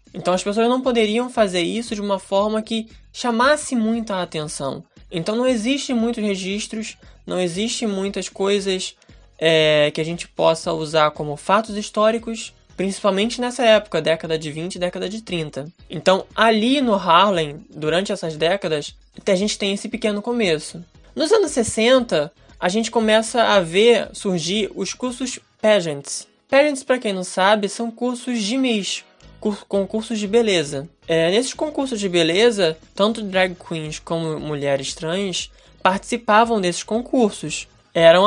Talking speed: 145 wpm